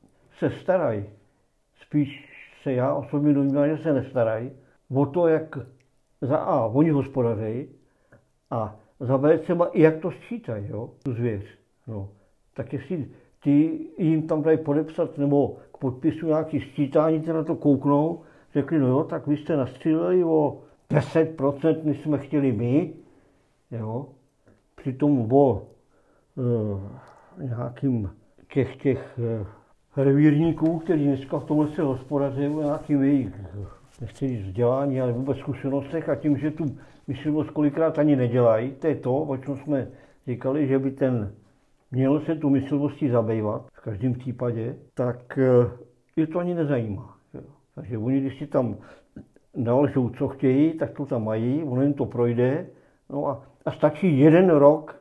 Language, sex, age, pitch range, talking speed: Czech, male, 50-69, 125-150 Hz, 140 wpm